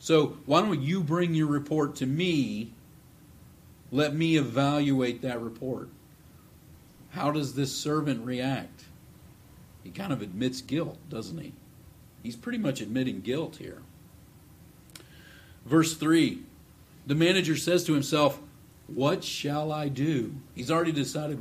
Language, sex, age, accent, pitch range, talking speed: English, male, 50-69, American, 125-160 Hz, 130 wpm